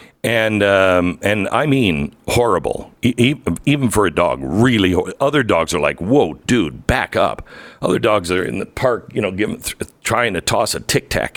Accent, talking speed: American, 195 wpm